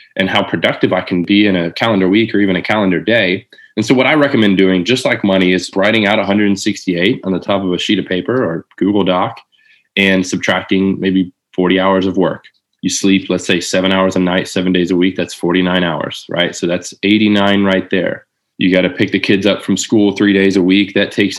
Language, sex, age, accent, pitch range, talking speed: English, male, 20-39, American, 95-110 Hz, 230 wpm